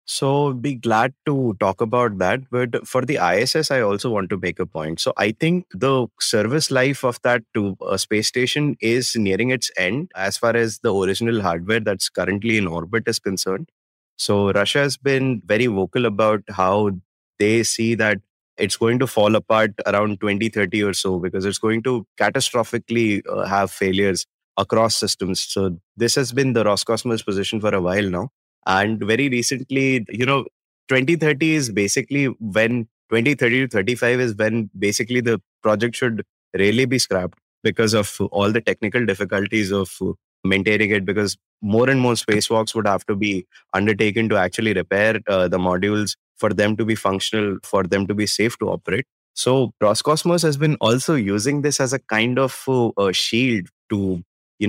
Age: 20-39